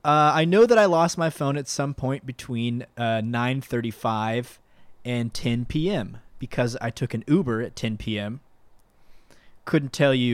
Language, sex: English, male